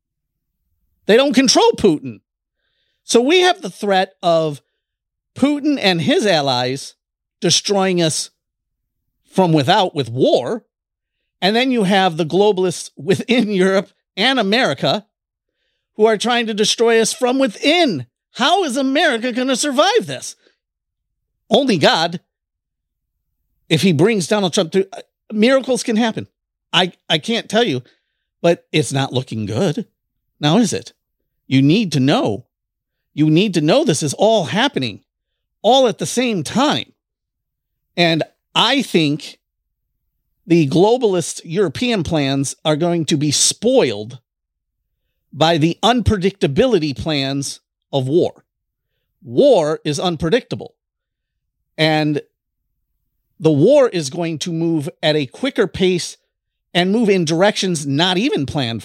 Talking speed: 130 wpm